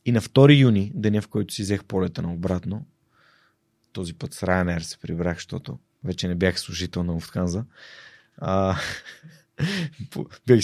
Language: Bulgarian